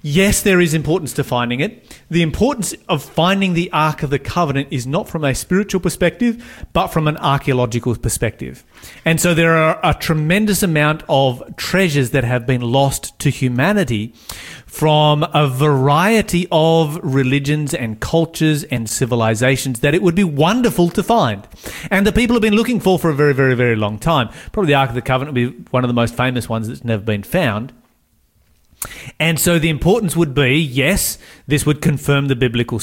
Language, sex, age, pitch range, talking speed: English, male, 40-59, 125-170 Hz, 185 wpm